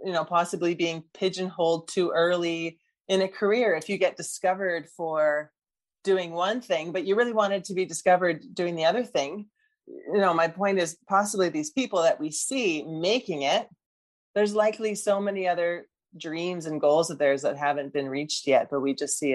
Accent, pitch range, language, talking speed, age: American, 155-200 Hz, English, 190 wpm, 20-39